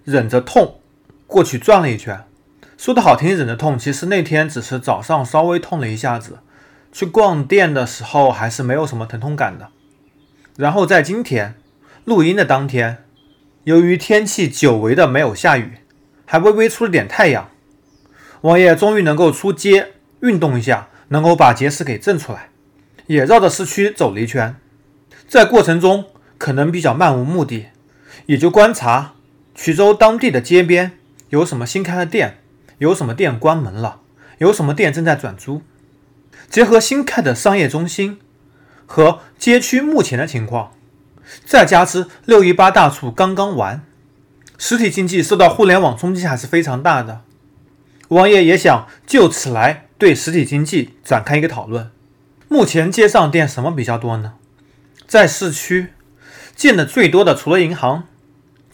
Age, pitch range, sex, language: 30-49, 130-185 Hz, male, Chinese